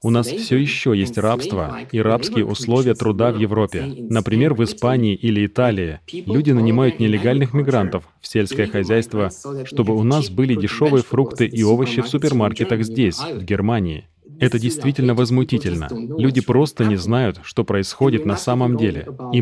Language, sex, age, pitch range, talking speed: Russian, male, 30-49, 110-125 Hz, 155 wpm